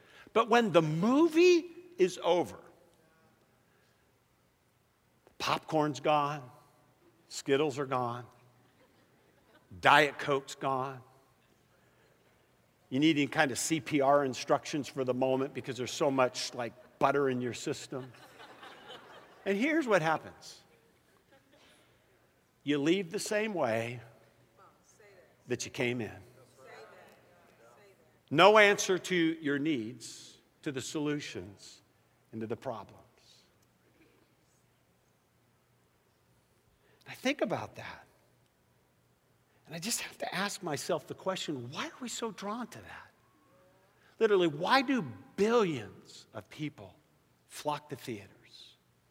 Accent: American